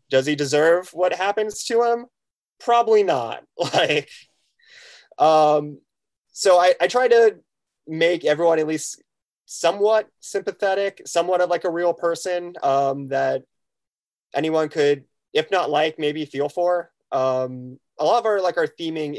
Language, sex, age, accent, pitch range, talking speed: English, male, 30-49, American, 125-170 Hz, 145 wpm